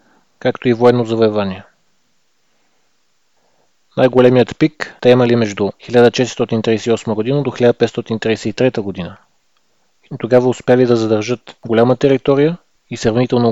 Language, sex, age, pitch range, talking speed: Bulgarian, male, 20-39, 115-130 Hz, 100 wpm